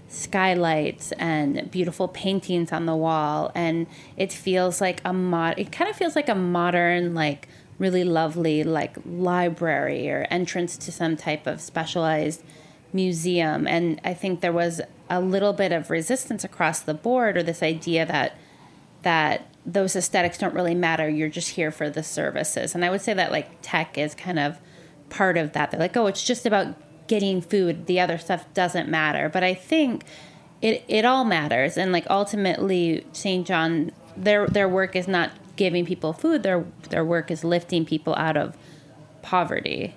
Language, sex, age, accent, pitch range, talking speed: English, female, 20-39, American, 160-190 Hz, 175 wpm